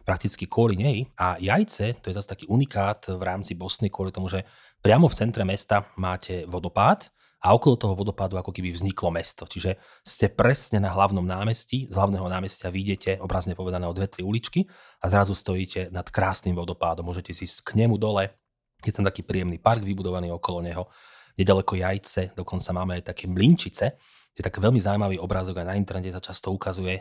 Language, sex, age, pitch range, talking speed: Slovak, male, 30-49, 90-105 Hz, 180 wpm